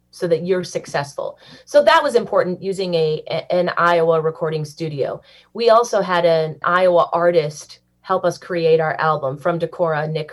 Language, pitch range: English, 165-220 Hz